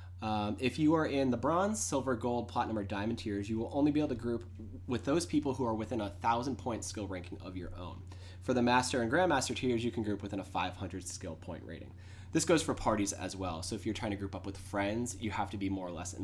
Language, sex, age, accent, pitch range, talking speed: English, male, 20-39, American, 95-125 Hz, 255 wpm